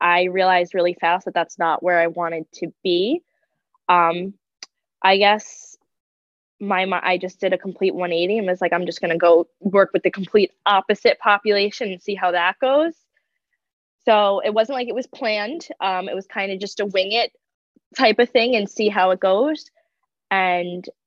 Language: English